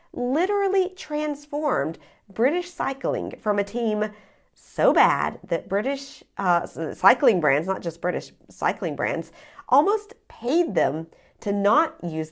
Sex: female